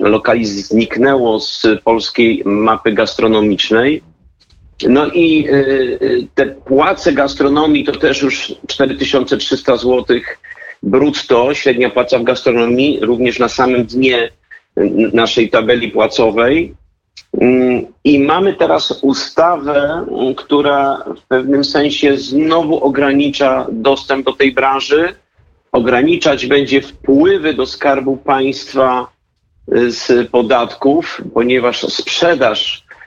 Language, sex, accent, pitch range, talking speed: Polish, male, native, 125-145 Hz, 95 wpm